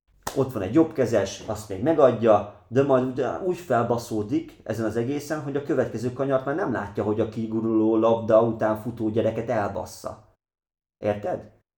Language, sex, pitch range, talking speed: Hungarian, male, 100-120 Hz, 155 wpm